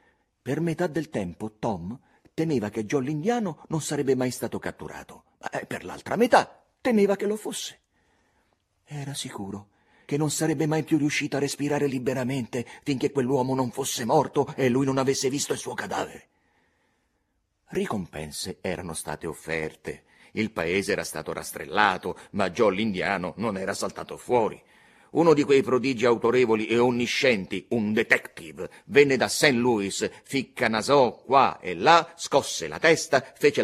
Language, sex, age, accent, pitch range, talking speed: Italian, male, 40-59, native, 105-145 Hz, 150 wpm